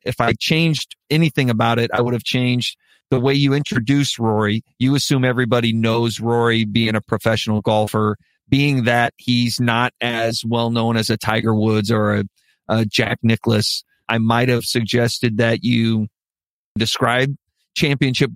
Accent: American